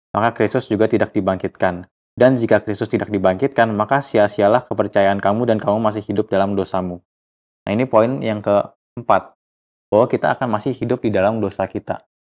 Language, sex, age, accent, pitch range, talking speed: Indonesian, male, 20-39, native, 95-115 Hz, 165 wpm